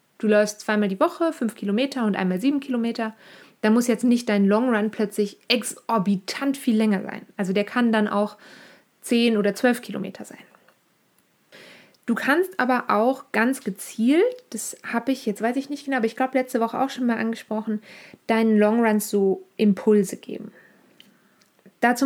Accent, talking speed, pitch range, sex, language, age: German, 170 wpm, 205-255 Hz, female, German, 20-39